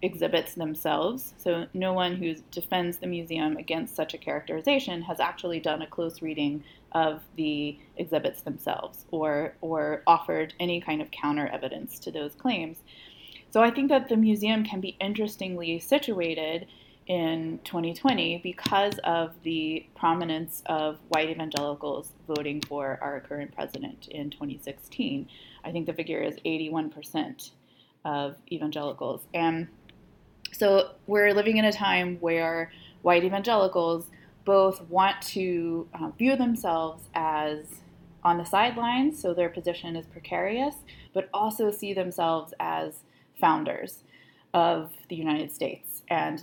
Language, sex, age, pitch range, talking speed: English, female, 20-39, 155-190 Hz, 135 wpm